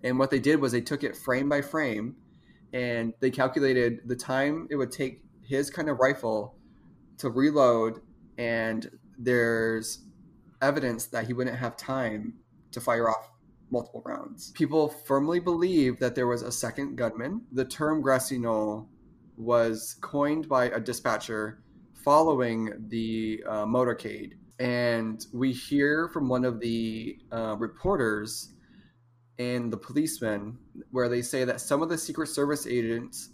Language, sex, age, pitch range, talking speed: English, male, 20-39, 115-140 Hz, 145 wpm